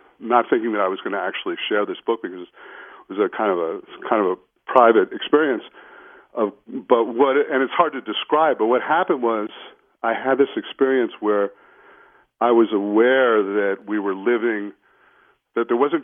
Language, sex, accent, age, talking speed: English, male, American, 50-69, 185 wpm